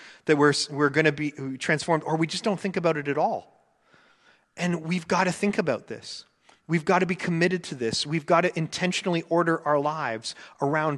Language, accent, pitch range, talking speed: English, American, 145-195 Hz, 210 wpm